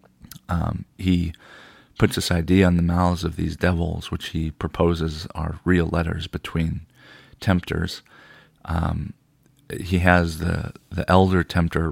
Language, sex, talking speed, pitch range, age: English, male, 130 wpm, 85-95 Hz, 40-59